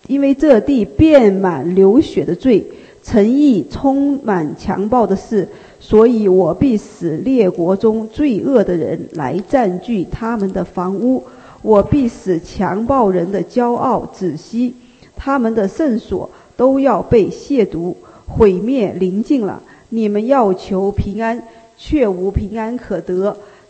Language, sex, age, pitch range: English, female, 50-69, 195-255 Hz